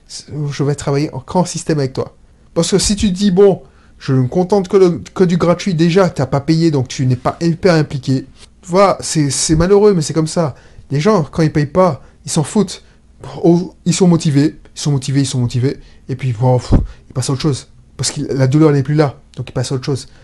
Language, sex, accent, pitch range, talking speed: French, male, French, 130-200 Hz, 240 wpm